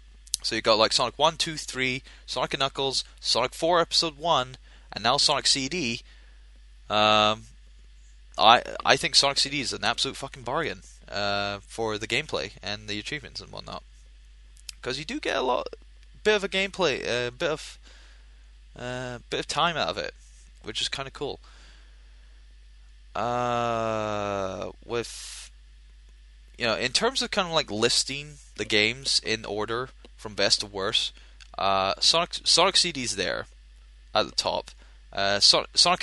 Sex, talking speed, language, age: male, 160 wpm, English, 20-39